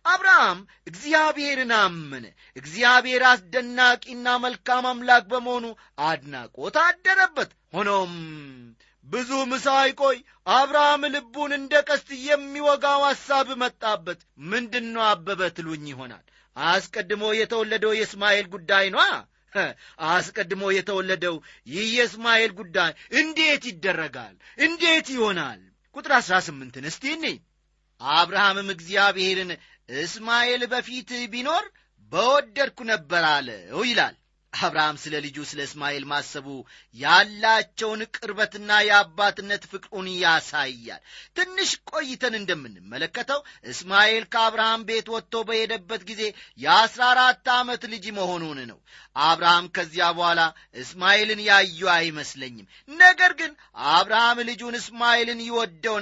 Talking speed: 90 wpm